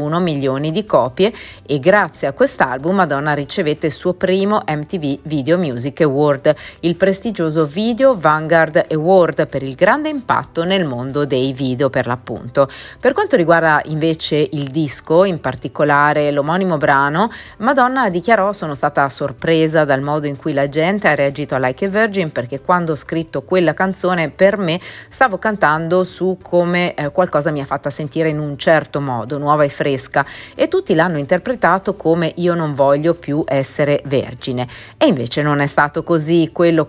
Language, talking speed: Italian, 165 wpm